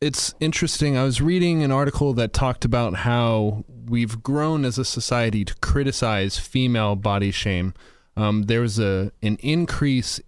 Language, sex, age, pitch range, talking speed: English, male, 30-49, 95-120 Hz, 150 wpm